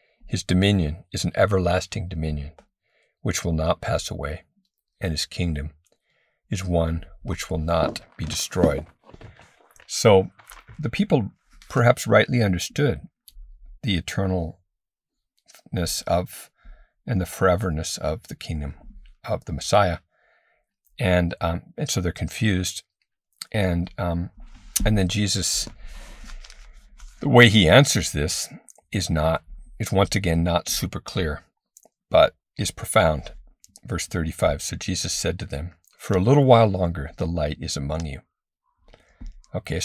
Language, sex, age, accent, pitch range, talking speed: English, male, 50-69, American, 80-100 Hz, 125 wpm